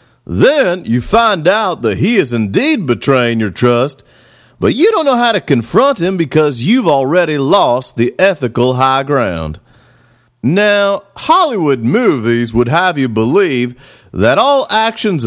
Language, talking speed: English, 145 wpm